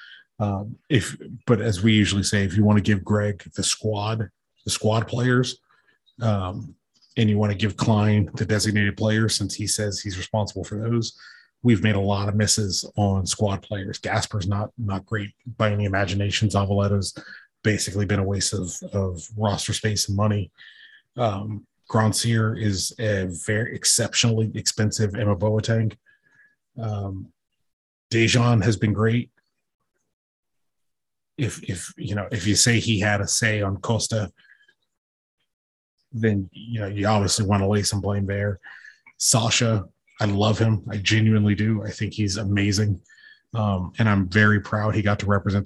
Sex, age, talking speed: male, 30-49, 160 wpm